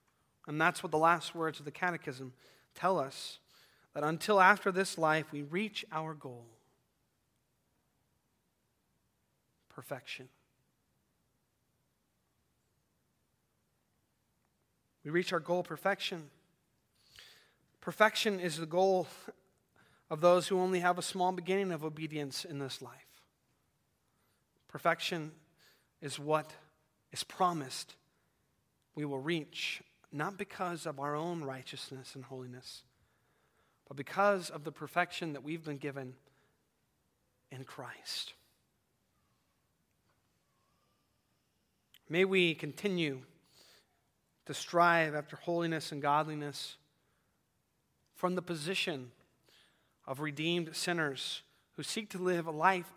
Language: English